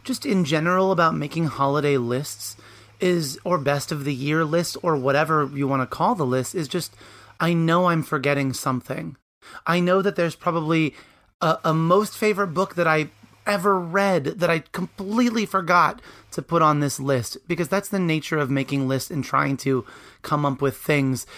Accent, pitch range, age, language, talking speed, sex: American, 140-175 Hz, 30-49, English, 185 wpm, male